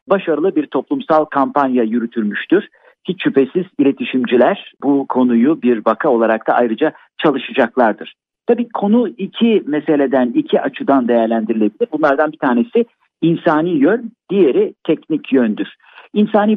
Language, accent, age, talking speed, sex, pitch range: Turkish, native, 50-69, 115 wpm, male, 120-195 Hz